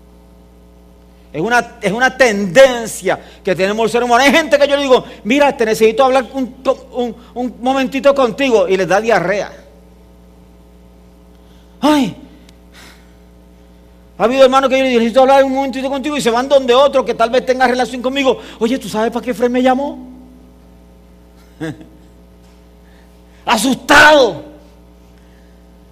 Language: English